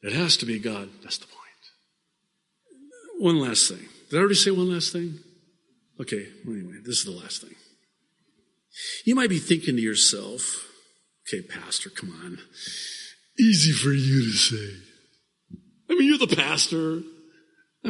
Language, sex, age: English, male, 50-69